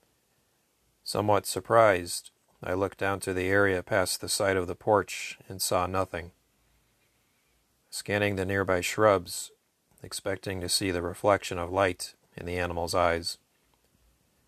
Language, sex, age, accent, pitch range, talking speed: English, male, 40-59, American, 90-100 Hz, 135 wpm